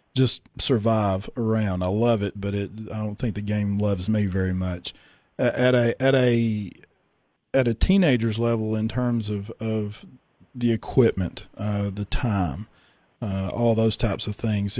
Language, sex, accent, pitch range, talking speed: English, male, American, 110-130 Hz, 165 wpm